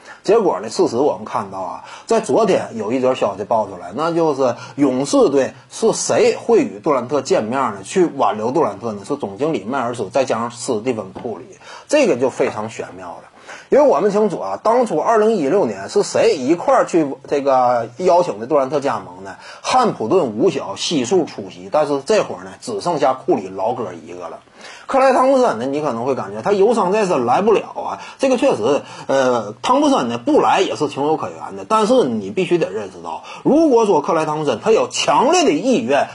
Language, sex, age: Chinese, male, 30-49